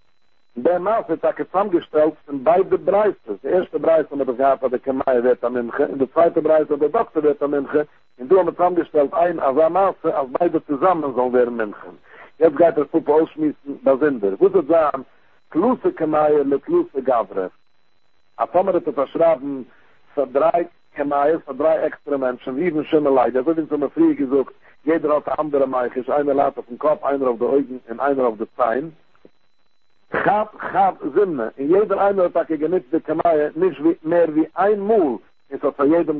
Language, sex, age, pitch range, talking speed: English, male, 60-79, 140-170 Hz, 190 wpm